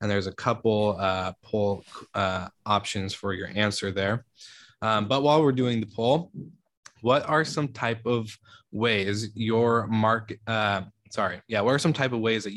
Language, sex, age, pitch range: English, male, 20-39, 100-115 Hz